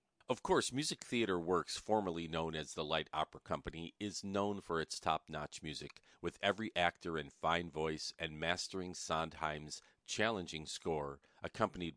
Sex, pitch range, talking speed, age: male, 75-95 Hz, 150 wpm, 40-59